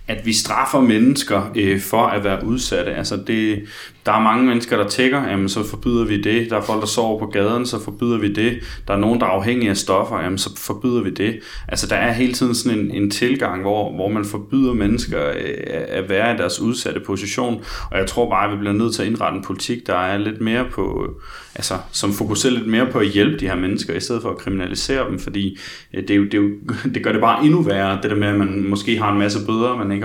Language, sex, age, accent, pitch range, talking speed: Danish, male, 30-49, native, 100-120 Hz, 245 wpm